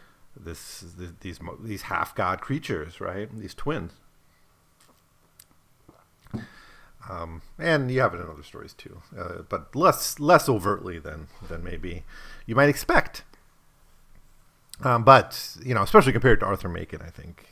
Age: 50-69